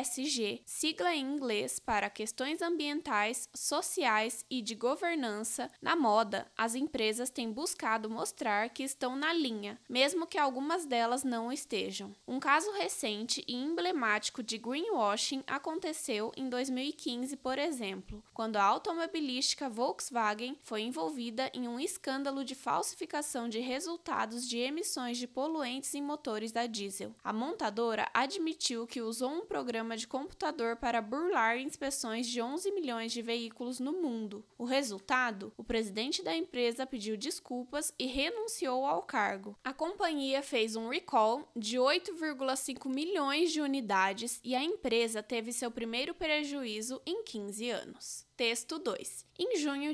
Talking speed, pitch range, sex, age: 140 wpm, 230-305 Hz, female, 10-29